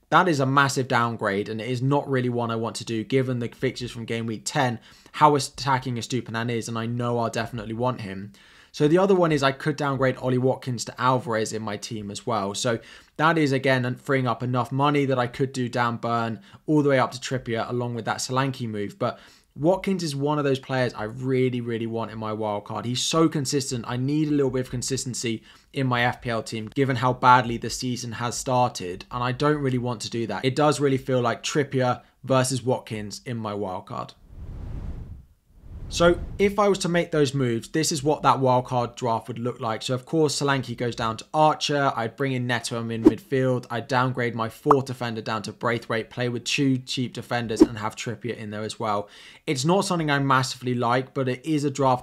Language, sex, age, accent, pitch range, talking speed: English, male, 20-39, British, 115-135 Hz, 225 wpm